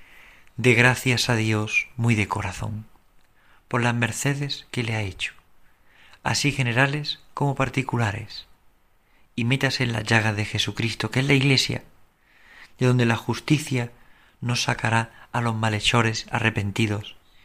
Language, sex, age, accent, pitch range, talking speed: Spanish, male, 40-59, Spanish, 105-125 Hz, 135 wpm